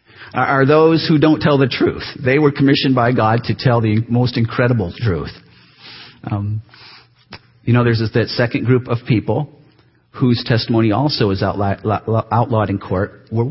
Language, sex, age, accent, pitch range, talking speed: English, male, 40-59, American, 115-190 Hz, 170 wpm